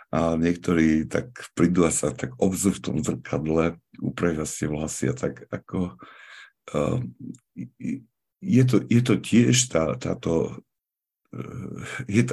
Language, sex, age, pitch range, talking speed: Slovak, male, 60-79, 80-95 Hz, 125 wpm